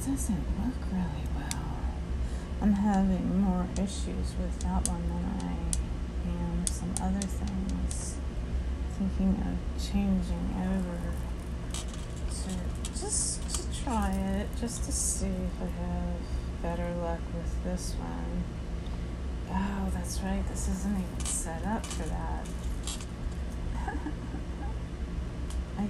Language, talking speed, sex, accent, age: English, 110 wpm, female, American, 30-49